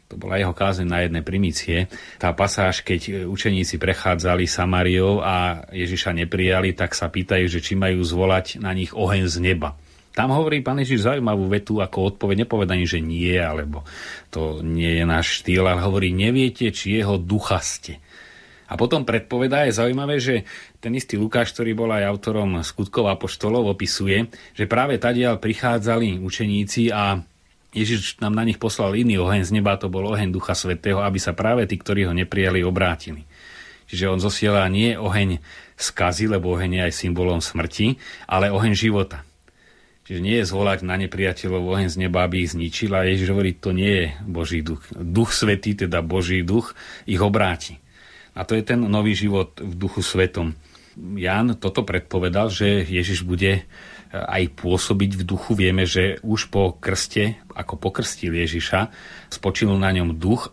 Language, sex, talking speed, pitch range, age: Slovak, male, 170 wpm, 90-105 Hz, 30-49